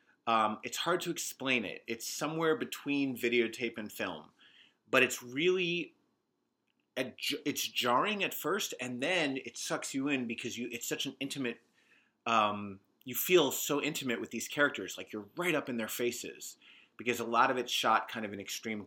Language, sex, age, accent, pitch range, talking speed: English, male, 30-49, American, 105-135 Hz, 180 wpm